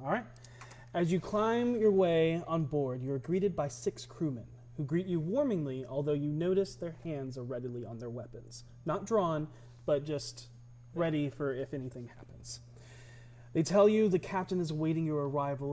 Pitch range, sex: 120-165 Hz, male